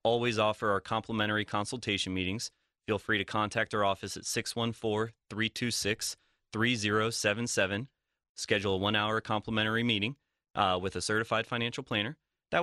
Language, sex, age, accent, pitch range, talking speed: English, male, 30-49, American, 100-120 Hz, 130 wpm